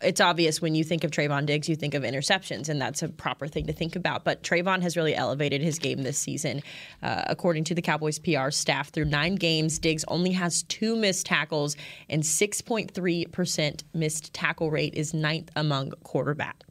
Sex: female